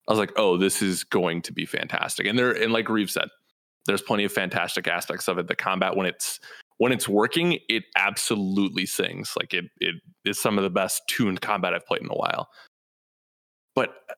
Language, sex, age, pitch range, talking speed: English, male, 20-39, 95-120 Hz, 205 wpm